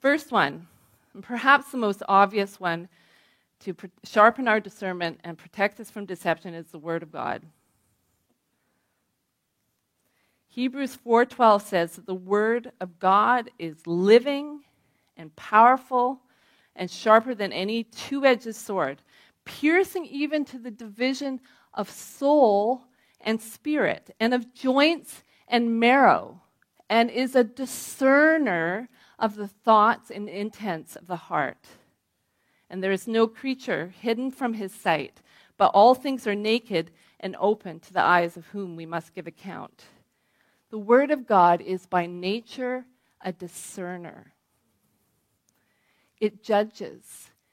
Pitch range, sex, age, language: 180-245 Hz, female, 30-49, English